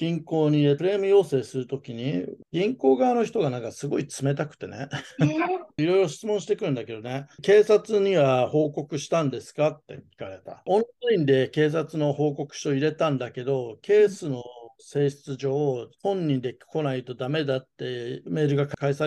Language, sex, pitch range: Japanese, male, 130-160 Hz